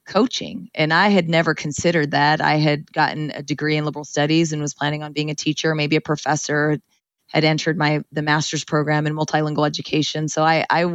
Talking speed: 205 wpm